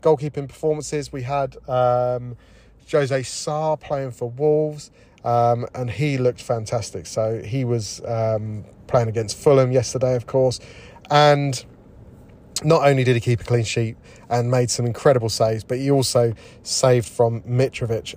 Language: English